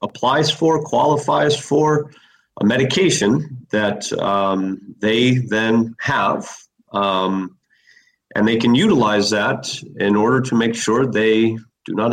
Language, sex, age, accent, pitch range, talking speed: English, male, 40-59, American, 105-135 Hz, 125 wpm